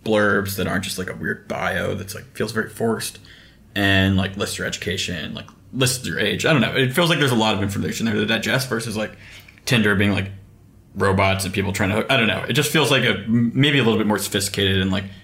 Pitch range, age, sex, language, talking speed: 100-115 Hz, 20-39, male, English, 240 wpm